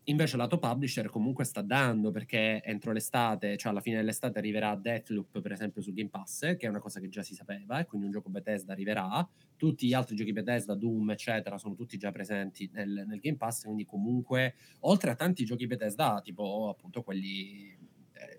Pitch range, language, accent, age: 105-135 Hz, Italian, native, 20-39